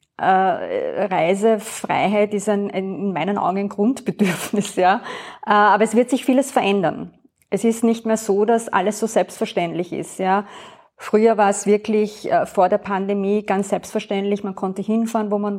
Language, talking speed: German, 170 wpm